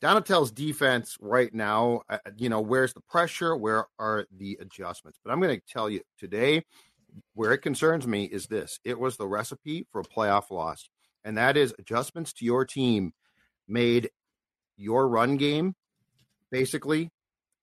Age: 50-69